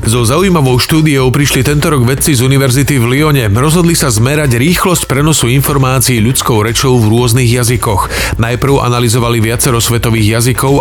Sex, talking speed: male, 150 wpm